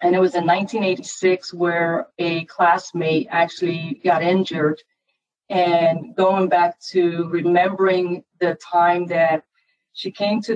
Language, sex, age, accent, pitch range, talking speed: English, female, 40-59, American, 170-195 Hz, 125 wpm